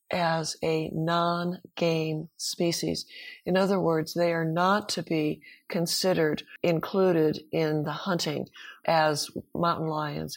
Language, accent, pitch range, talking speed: English, American, 155-180 Hz, 115 wpm